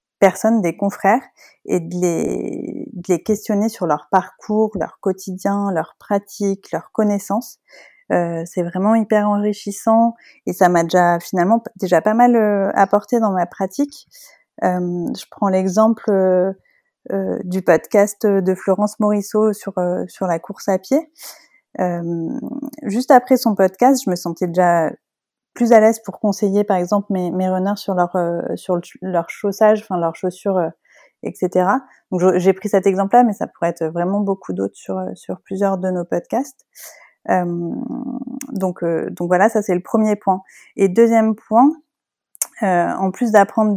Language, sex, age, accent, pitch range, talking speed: French, female, 30-49, French, 180-220 Hz, 165 wpm